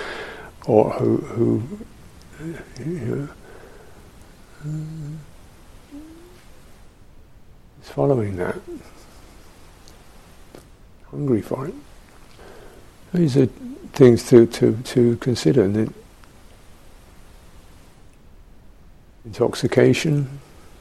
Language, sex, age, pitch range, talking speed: English, male, 60-79, 100-115 Hz, 60 wpm